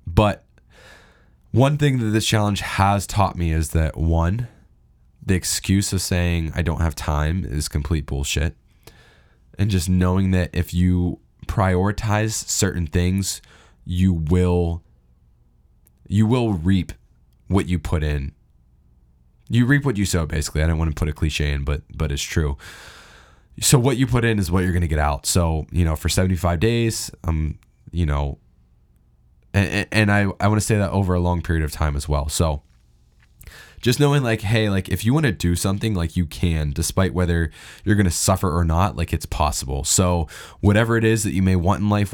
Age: 10-29